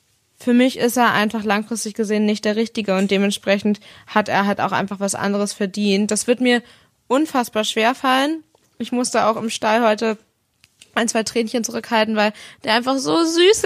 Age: 20-39